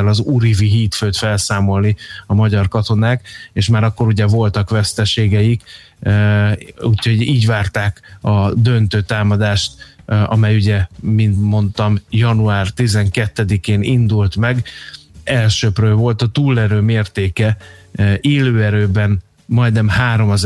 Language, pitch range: Hungarian, 100-115 Hz